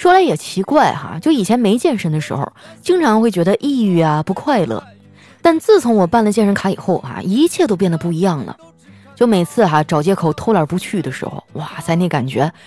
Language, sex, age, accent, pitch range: Chinese, female, 20-39, native, 170-270 Hz